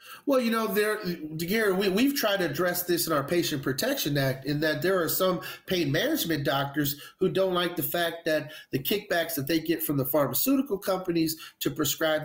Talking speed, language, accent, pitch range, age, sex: 200 wpm, English, American, 140-175 Hz, 30-49, male